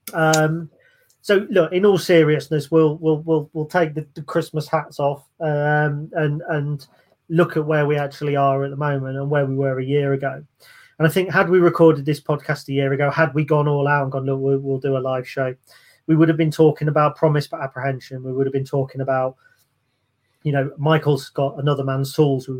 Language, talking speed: English, 220 wpm